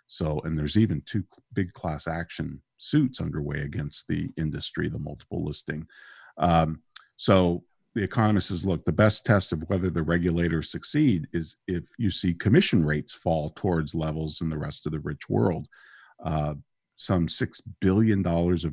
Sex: male